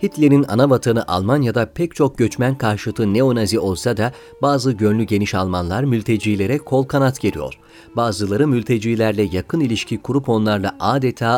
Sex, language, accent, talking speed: male, Turkish, native, 135 wpm